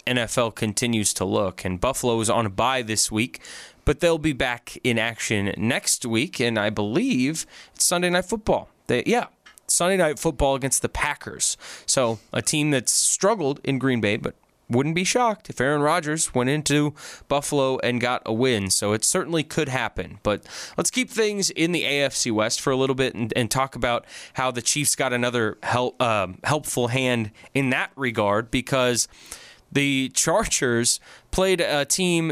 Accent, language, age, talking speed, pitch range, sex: American, English, 20-39, 180 wpm, 110-140 Hz, male